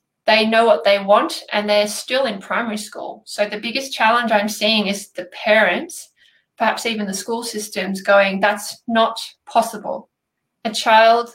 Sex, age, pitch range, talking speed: female, 20-39, 200-235 Hz, 165 wpm